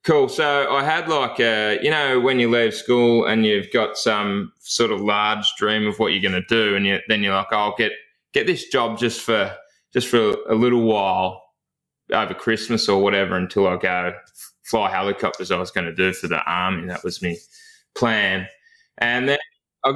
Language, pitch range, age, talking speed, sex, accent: English, 100-115 Hz, 20-39, 205 wpm, male, Australian